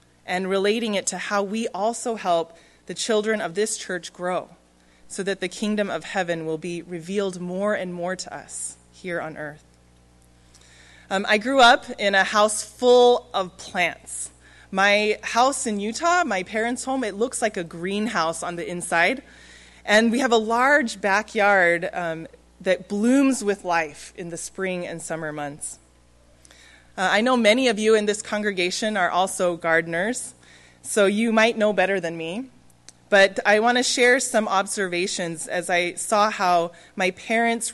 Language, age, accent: Korean, 20-39, American